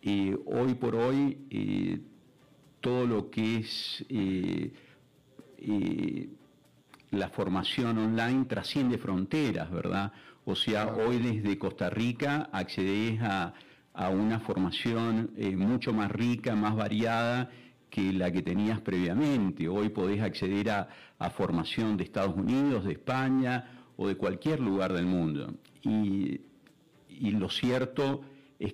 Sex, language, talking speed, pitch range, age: male, Spanish, 125 wpm, 95-120 Hz, 50-69